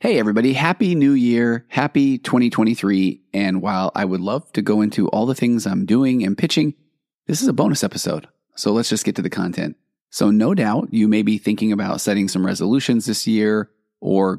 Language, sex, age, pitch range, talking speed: English, male, 30-49, 100-125 Hz, 200 wpm